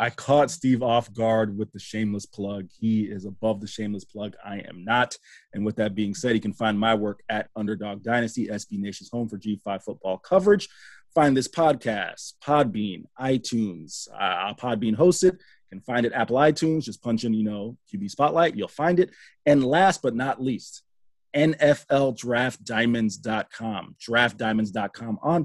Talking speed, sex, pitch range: 165 wpm, male, 110-145 Hz